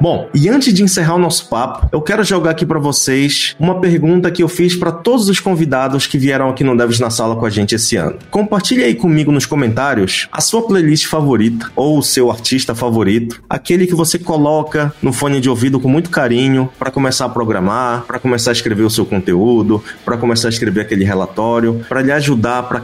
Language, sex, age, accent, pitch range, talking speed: Portuguese, male, 20-39, Brazilian, 115-155 Hz, 215 wpm